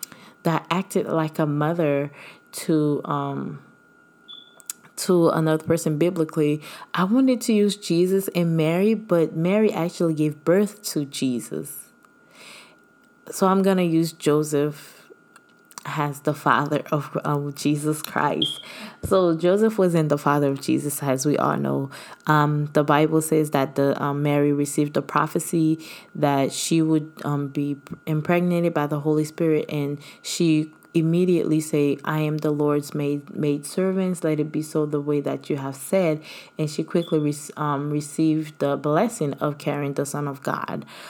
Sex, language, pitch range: female, English, 145-170 Hz